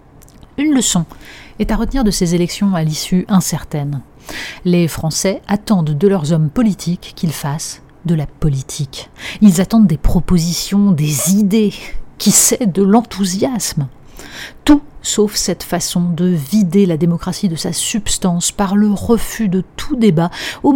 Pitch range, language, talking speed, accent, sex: 165-205 Hz, French, 145 wpm, French, female